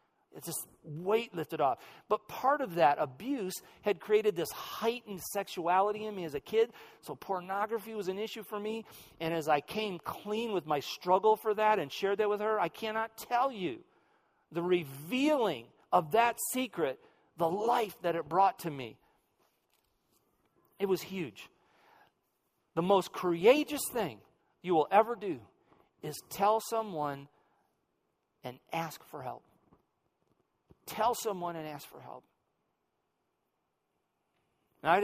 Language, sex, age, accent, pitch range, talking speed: English, male, 40-59, American, 160-220 Hz, 140 wpm